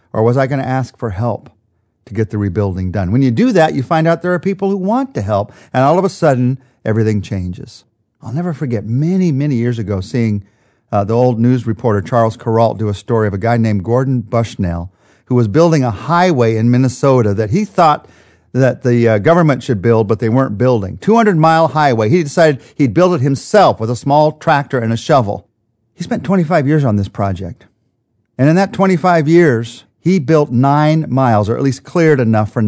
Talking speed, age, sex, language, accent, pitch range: 210 wpm, 50-69, male, English, American, 110-145 Hz